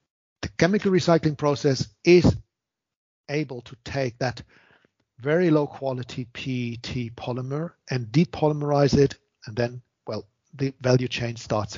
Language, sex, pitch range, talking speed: Italian, male, 125-150 Hz, 120 wpm